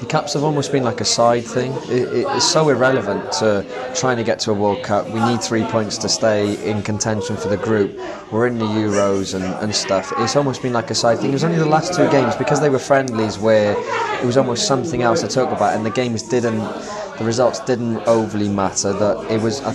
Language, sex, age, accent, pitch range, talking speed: English, male, 20-39, British, 105-130 Hz, 245 wpm